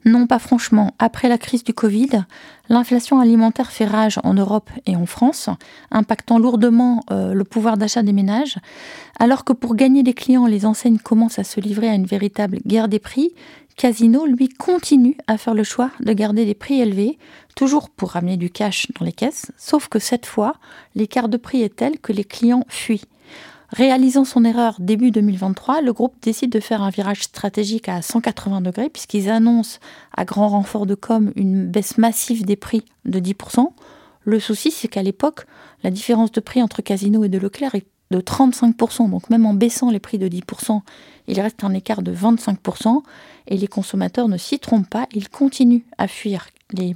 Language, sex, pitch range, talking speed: French, female, 205-250 Hz, 190 wpm